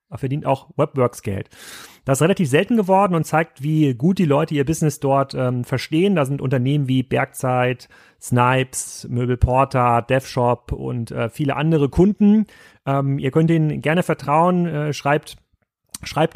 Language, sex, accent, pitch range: German, male, German, 125-155 Hz